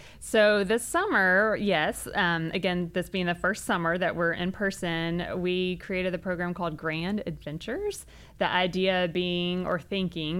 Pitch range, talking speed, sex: 170-190 Hz, 155 wpm, female